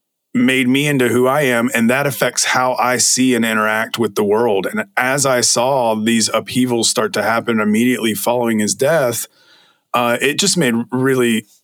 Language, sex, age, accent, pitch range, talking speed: English, male, 30-49, American, 115-140 Hz, 180 wpm